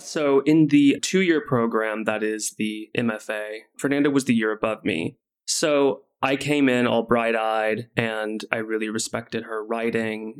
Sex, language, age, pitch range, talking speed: male, English, 20-39, 115-145 Hz, 155 wpm